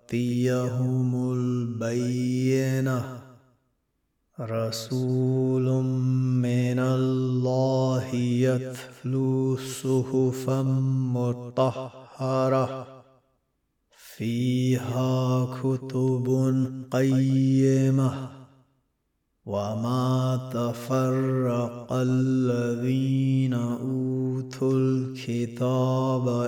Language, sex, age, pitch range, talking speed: Arabic, male, 30-49, 125-130 Hz, 35 wpm